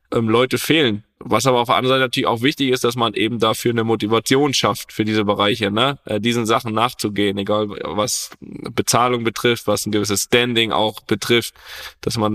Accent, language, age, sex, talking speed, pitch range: German, German, 10-29, male, 185 wpm, 105-125 Hz